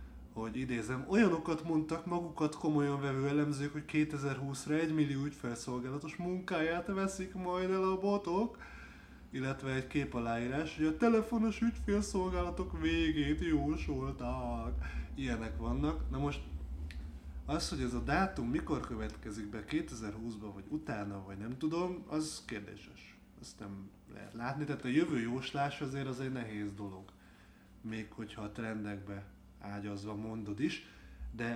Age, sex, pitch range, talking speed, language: 20-39, male, 105-150 Hz, 130 wpm, Hungarian